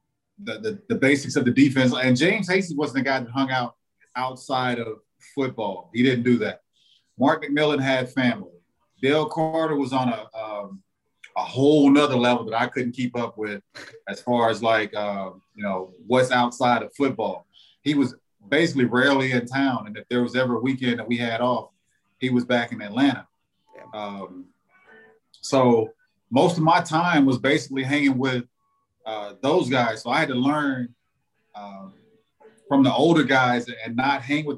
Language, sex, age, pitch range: English, male, 30-49, 120-140 Hz